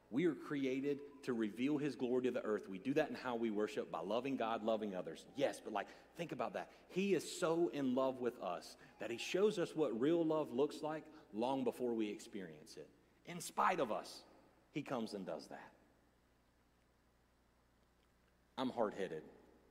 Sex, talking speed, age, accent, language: male, 185 wpm, 40-59, American, English